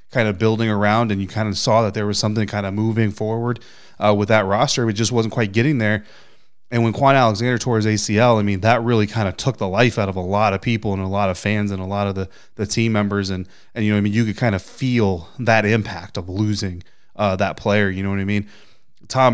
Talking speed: 265 wpm